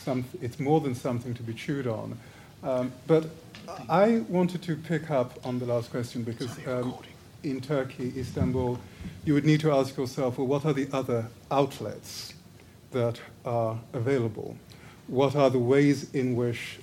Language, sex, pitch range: English, male, 120-155 Hz